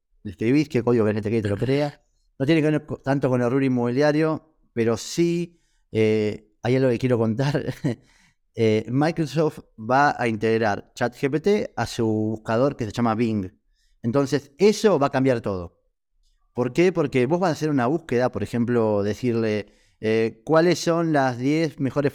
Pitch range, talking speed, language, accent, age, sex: 110-140 Hz, 170 wpm, Spanish, Argentinian, 30-49, male